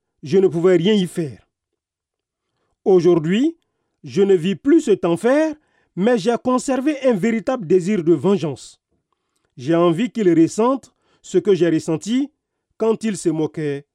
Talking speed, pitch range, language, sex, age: 140 wpm, 180-275 Hz, French, male, 40-59